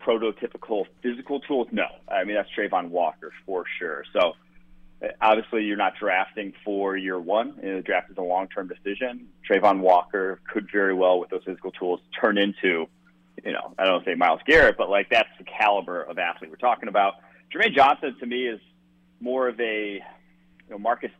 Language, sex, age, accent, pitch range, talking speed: English, male, 30-49, American, 90-120 Hz, 185 wpm